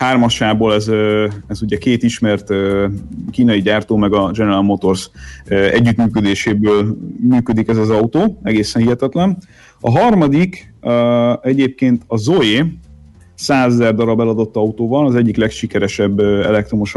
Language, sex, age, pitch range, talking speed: Hungarian, male, 30-49, 105-125 Hz, 115 wpm